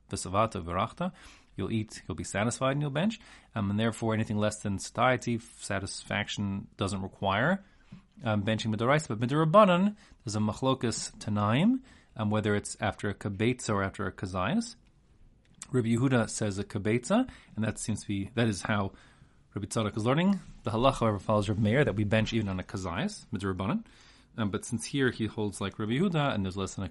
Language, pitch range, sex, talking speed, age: English, 100-130 Hz, male, 185 wpm, 30-49